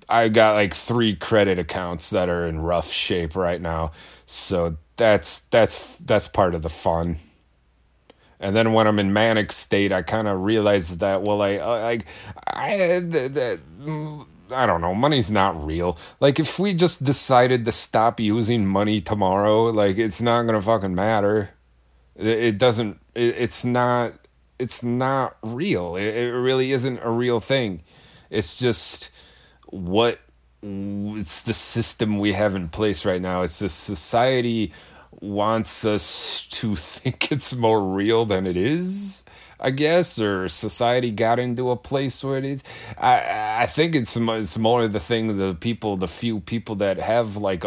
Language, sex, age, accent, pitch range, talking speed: English, male, 30-49, American, 95-120 Hz, 160 wpm